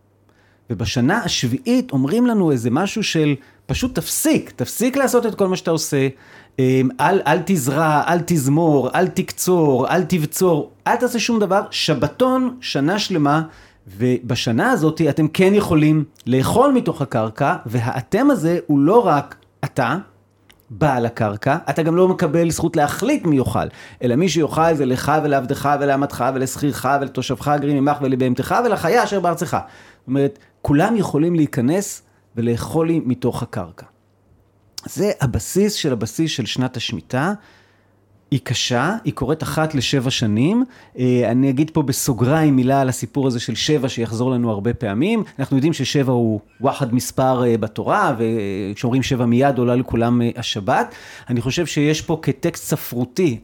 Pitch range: 120-165 Hz